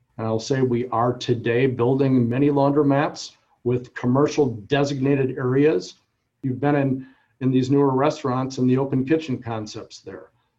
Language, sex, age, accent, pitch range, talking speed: English, male, 50-69, American, 120-145 Hz, 145 wpm